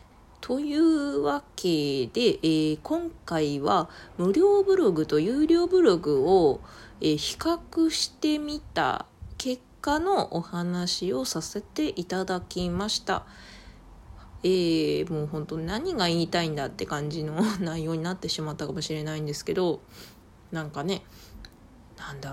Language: Japanese